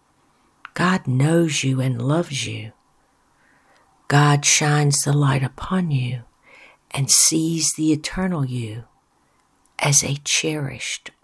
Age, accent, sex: 60-79, American, female